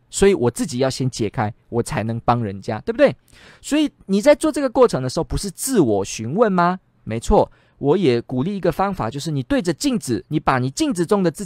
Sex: male